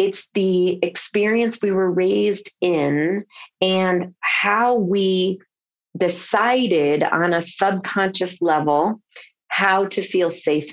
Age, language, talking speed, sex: 30-49, English, 105 wpm, female